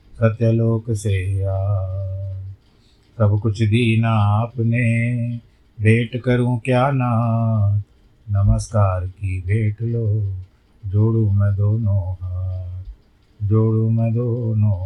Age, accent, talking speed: 30-49, native, 90 wpm